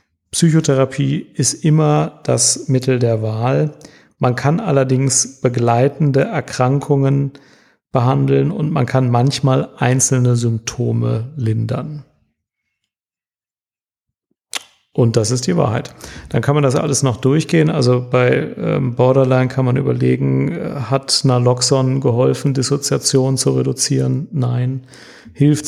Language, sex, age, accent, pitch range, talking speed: German, male, 40-59, German, 125-140 Hz, 105 wpm